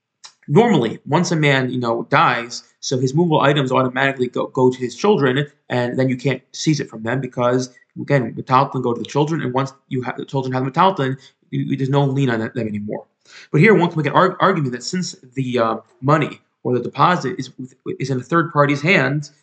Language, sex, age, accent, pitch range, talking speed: English, male, 20-39, American, 130-155 Hz, 220 wpm